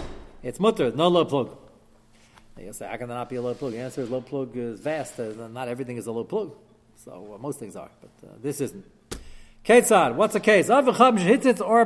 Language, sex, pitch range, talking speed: English, male, 120-180 Hz, 220 wpm